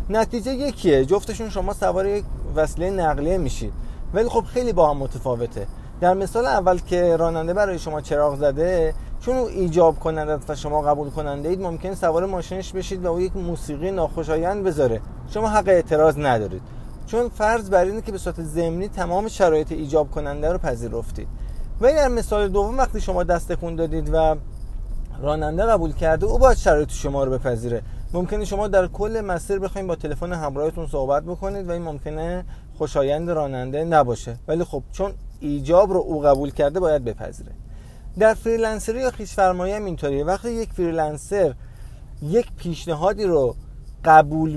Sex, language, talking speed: male, Persian, 160 wpm